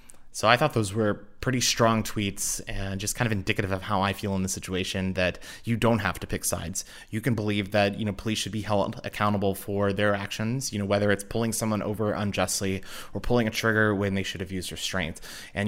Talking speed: 230 wpm